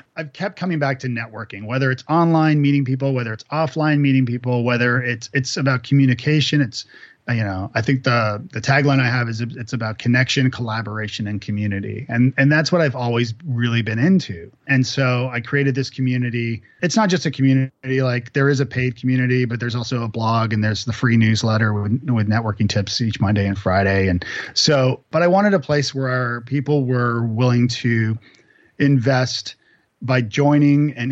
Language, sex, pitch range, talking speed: English, male, 115-135 Hz, 190 wpm